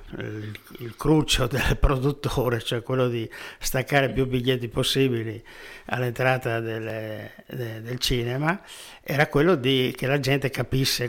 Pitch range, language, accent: 120-145 Hz, Italian, native